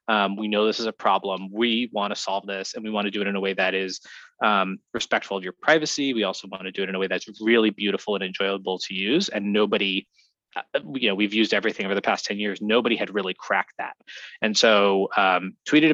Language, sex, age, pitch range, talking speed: English, male, 20-39, 95-110 Hz, 245 wpm